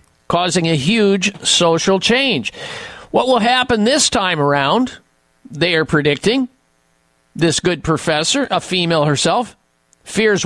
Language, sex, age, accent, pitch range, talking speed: English, male, 50-69, American, 165-245 Hz, 120 wpm